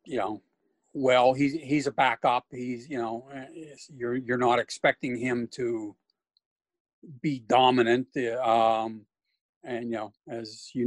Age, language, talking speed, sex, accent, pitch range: 50-69, English, 135 wpm, male, American, 115-140 Hz